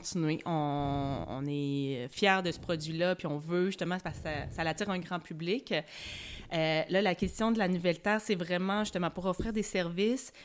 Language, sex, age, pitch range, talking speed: French, female, 30-49, 160-190 Hz, 195 wpm